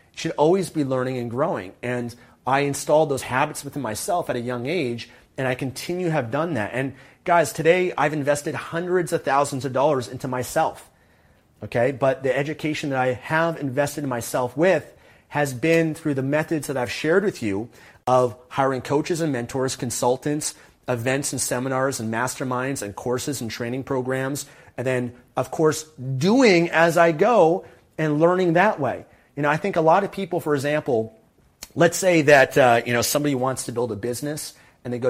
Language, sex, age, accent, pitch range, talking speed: English, male, 30-49, American, 125-155 Hz, 190 wpm